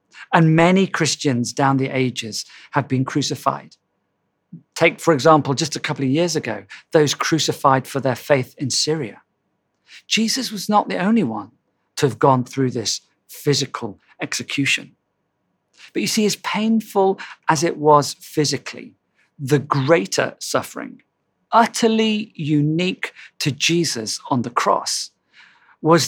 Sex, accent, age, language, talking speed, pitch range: male, British, 40-59, English, 135 wpm, 130-170 Hz